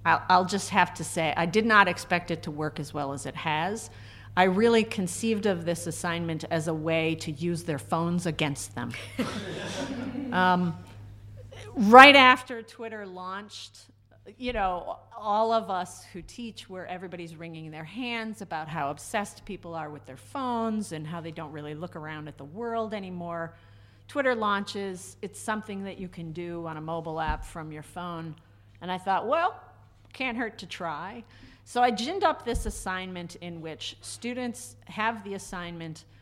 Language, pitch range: English, 140-195 Hz